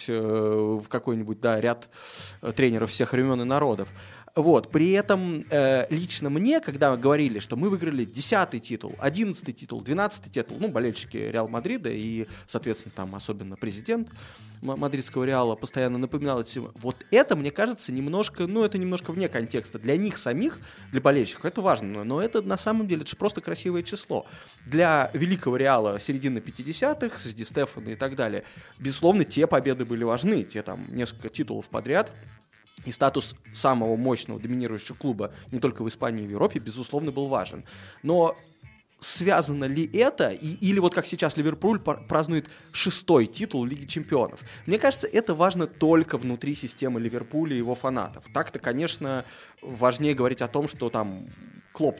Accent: native